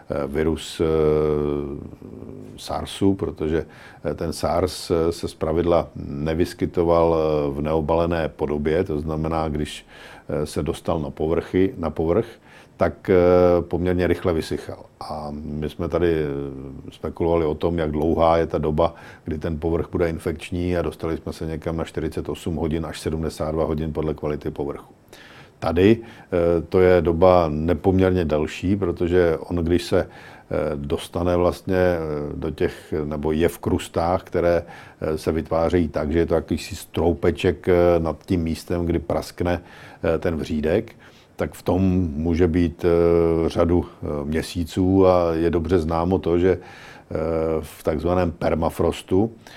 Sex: male